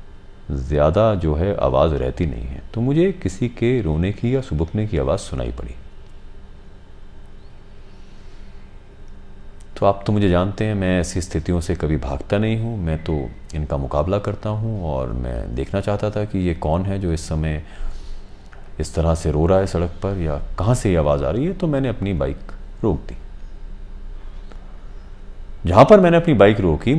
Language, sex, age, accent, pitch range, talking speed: Hindi, male, 40-59, native, 75-105 Hz, 175 wpm